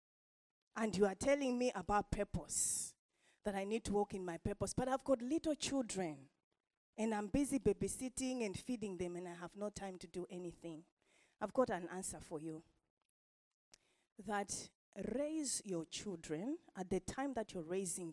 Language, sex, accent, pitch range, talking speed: English, female, South African, 185-290 Hz, 170 wpm